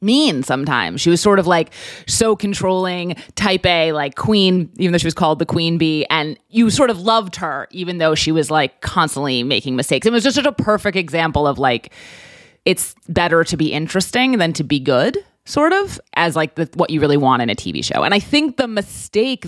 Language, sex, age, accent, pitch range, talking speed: English, female, 30-49, American, 145-185 Hz, 220 wpm